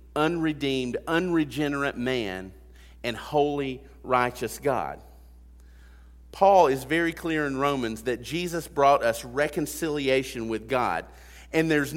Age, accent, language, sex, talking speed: 40-59, American, English, male, 110 wpm